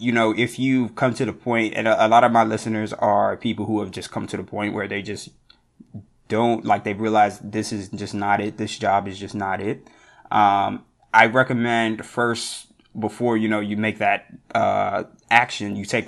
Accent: American